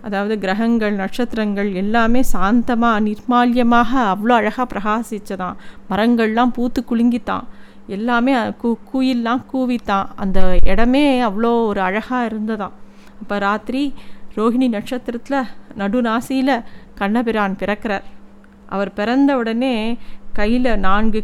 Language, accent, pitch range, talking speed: Tamil, native, 205-245 Hz, 95 wpm